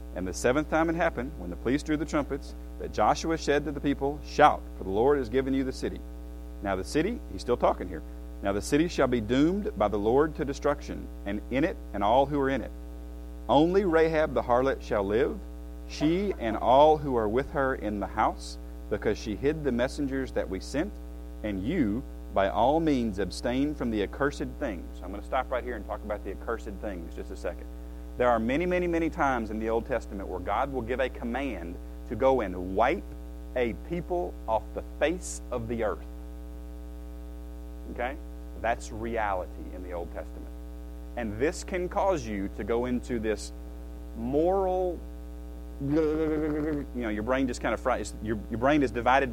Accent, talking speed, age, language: American, 195 wpm, 40-59, English